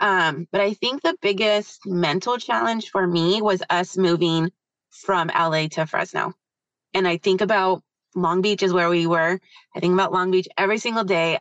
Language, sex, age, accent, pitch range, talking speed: English, female, 20-39, American, 170-200 Hz, 185 wpm